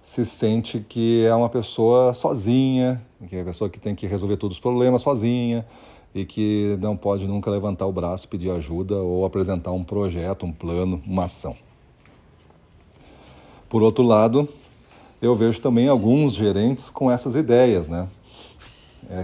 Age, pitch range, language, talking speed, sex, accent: 40-59, 95-120 Hz, Portuguese, 155 wpm, male, Brazilian